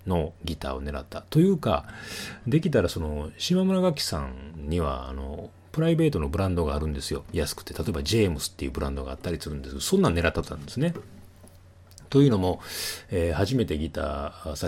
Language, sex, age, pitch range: Japanese, male, 30-49, 70-95 Hz